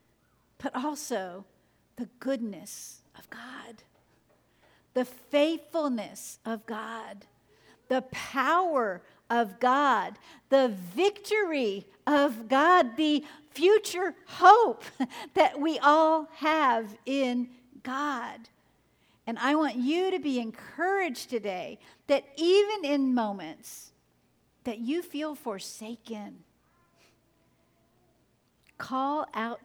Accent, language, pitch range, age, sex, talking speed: American, English, 215-275 Hz, 50-69, female, 90 wpm